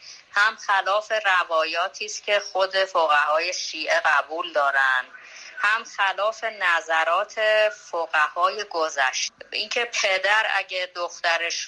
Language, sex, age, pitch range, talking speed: Persian, female, 30-49, 165-215 Hz, 100 wpm